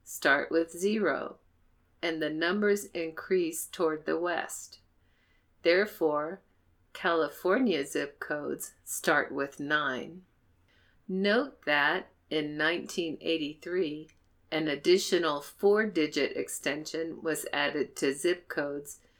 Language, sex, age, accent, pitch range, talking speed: English, female, 50-69, American, 145-185 Hz, 95 wpm